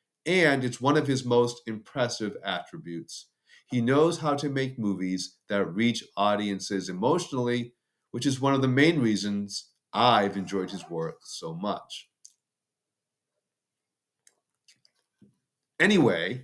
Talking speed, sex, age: 115 wpm, male, 40-59